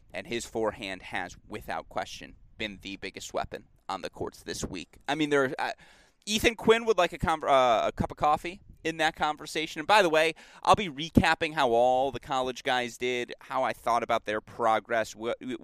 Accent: American